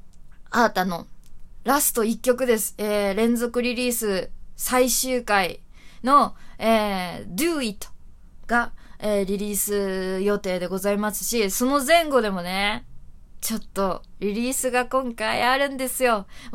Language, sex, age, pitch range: Japanese, female, 20-39, 195-240 Hz